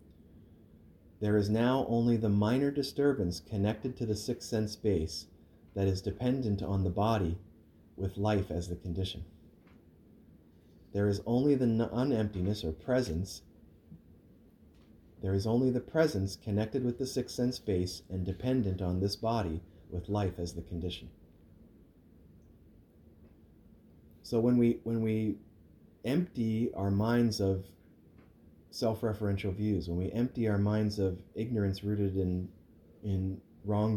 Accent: American